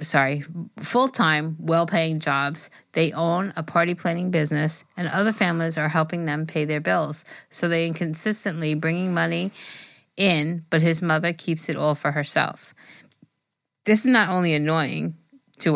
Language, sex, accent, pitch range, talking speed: English, female, American, 145-170 Hz, 150 wpm